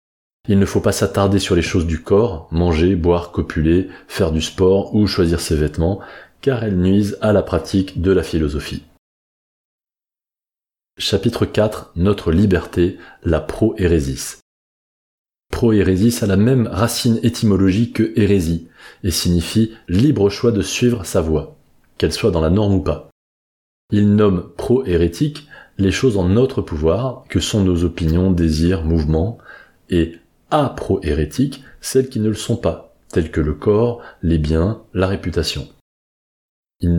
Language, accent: French, French